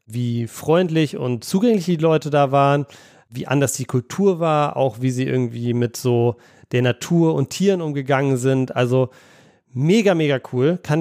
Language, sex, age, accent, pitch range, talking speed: German, male, 30-49, German, 130-155 Hz, 165 wpm